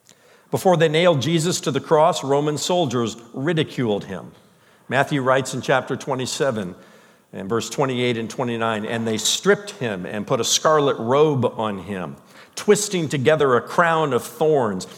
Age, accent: 50-69, American